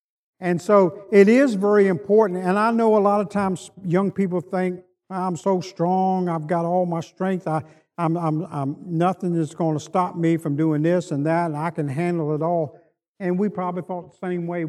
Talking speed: 215 wpm